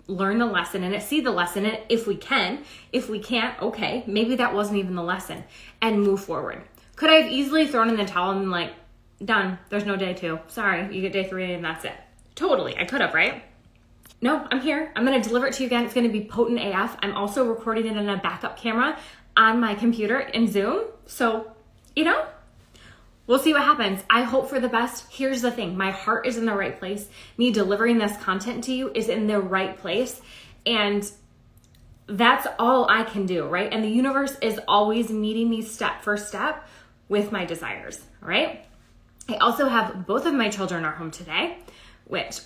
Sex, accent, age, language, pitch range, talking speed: female, American, 20-39, English, 200-245 Hz, 210 wpm